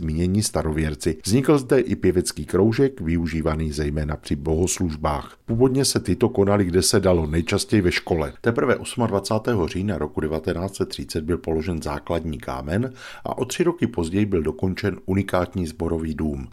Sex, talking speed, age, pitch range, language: male, 145 wpm, 50-69, 80-105 Hz, Czech